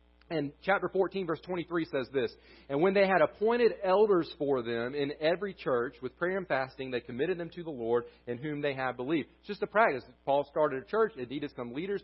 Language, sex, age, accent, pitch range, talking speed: English, male, 40-59, American, 130-185 Hz, 225 wpm